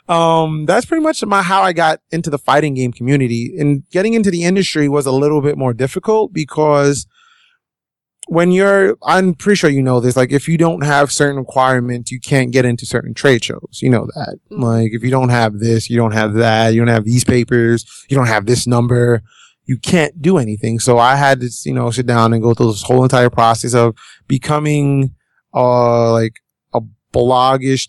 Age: 30-49